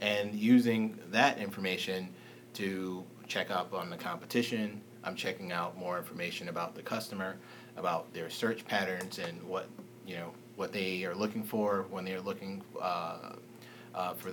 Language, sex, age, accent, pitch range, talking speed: English, male, 30-49, American, 95-115 Hz, 155 wpm